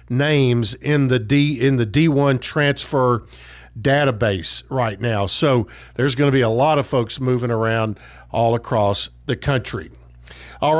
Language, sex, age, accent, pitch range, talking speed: English, male, 50-69, American, 125-155 Hz, 150 wpm